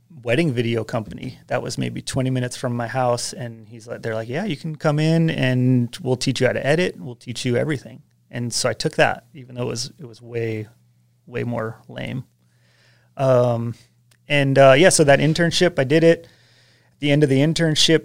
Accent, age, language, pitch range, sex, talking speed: American, 30-49, English, 115-135 Hz, male, 215 wpm